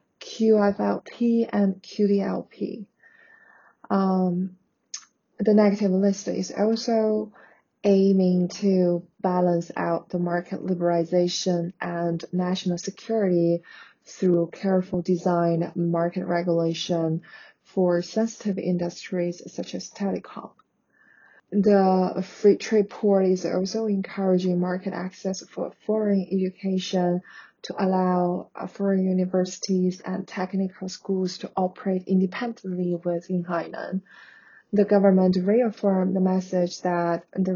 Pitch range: 175-200 Hz